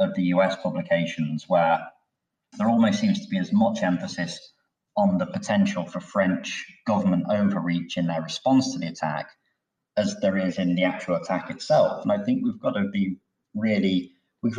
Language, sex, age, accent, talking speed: English, male, 30-49, British, 175 wpm